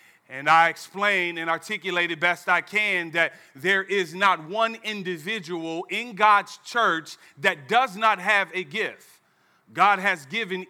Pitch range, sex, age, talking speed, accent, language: 160-195 Hz, male, 40-59, 150 wpm, American, English